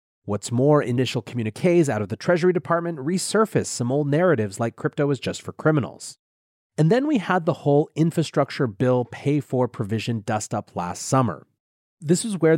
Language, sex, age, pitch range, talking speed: English, male, 30-49, 120-170 Hz, 175 wpm